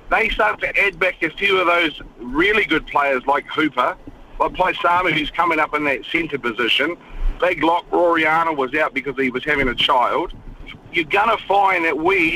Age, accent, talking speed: 40-59, Australian, 195 wpm